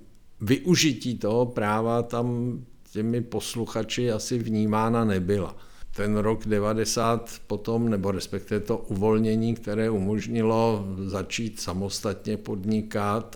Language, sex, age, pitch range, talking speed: Czech, male, 50-69, 105-120 Hz, 100 wpm